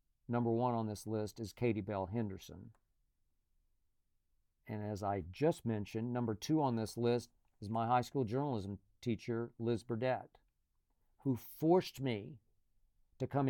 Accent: American